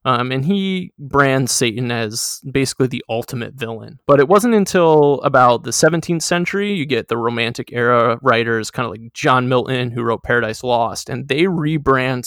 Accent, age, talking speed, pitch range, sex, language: American, 20-39, 175 wpm, 120-145 Hz, male, English